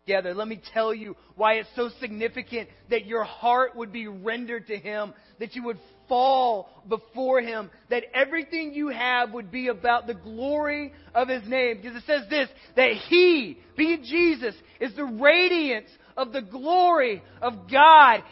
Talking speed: 165 wpm